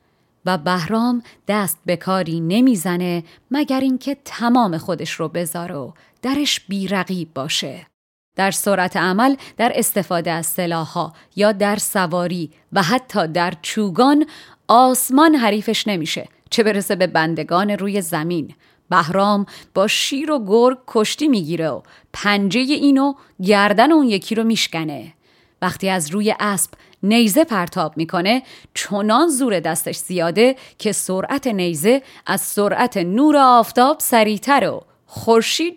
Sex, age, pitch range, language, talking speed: female, 30-49, 180-245 Hz, Persian, 125 wpm